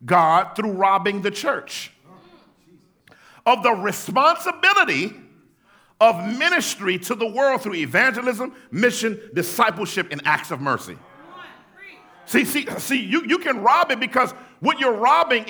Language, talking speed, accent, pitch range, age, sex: English, 130 wpm, American, 220-300 Hz, 50-69, male